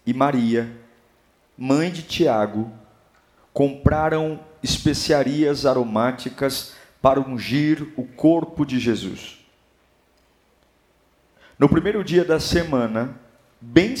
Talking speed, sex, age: 85 wpm, male, 50-69